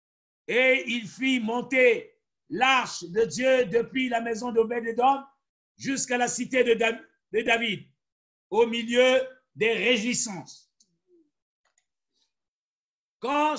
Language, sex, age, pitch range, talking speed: French, male, 60-79, 245-275 Hz, 95 wpm